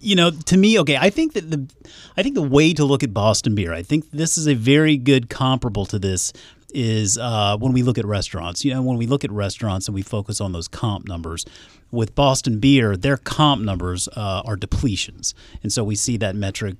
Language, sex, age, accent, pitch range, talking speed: English, male, 40-59, American, 100-135 Hz, 230 wpm